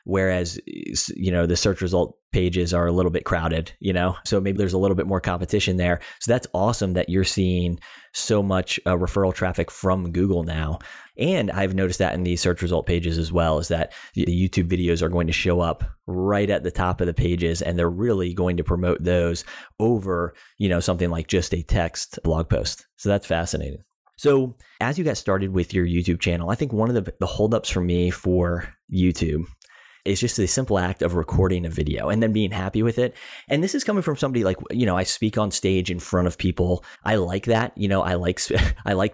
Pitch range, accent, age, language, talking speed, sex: 90-100 Hz, American, 30-49, English, 225 wpm, male